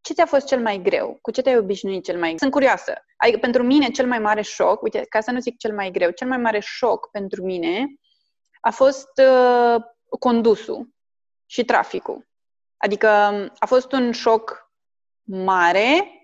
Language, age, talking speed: Romanian, 20-39, 170 wpm